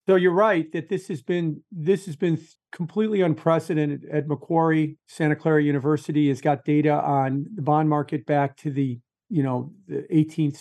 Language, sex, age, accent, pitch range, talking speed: English, male, 50-69, American, 140-165 Hz, 175 wpm